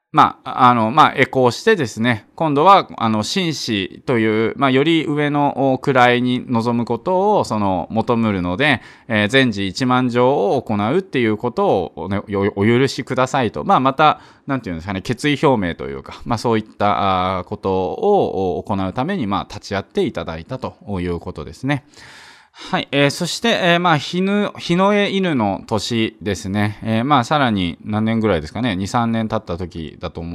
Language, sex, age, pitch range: Japanese, male, 20-39, 105-150 Hz